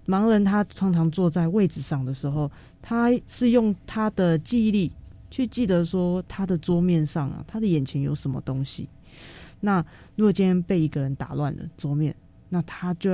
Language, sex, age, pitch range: Chinese, female, 20-39, 150-200 Hz